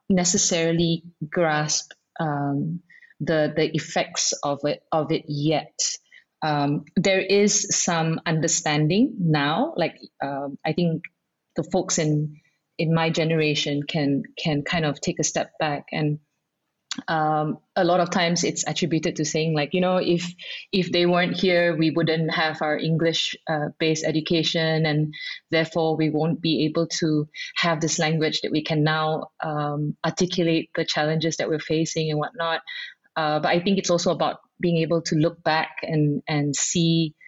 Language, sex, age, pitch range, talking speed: English, female, 30-49, 150-175 Hz, 160 wpm